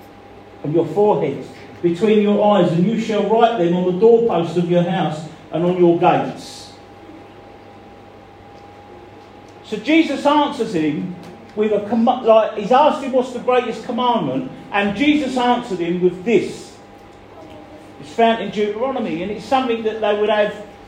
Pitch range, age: 185-250 Hz, 40-59